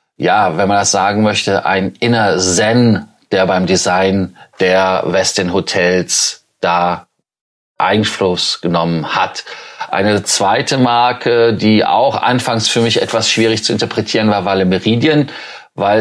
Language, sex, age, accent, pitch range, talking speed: German, male, 30-49, German, 95-115 Hz, 135 wpm